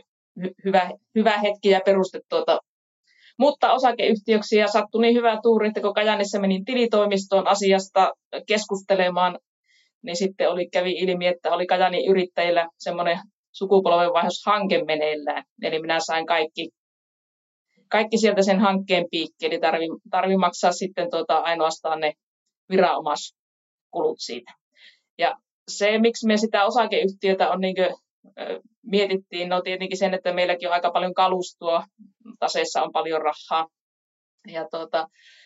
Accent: native